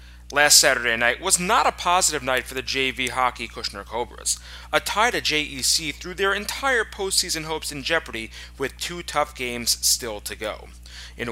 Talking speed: 175 wpm